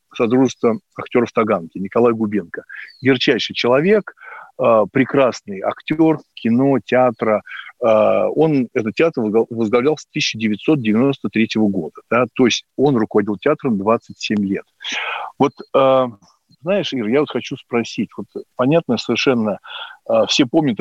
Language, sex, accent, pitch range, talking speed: Russian, male, native, 110-140 Hz, 110 wpm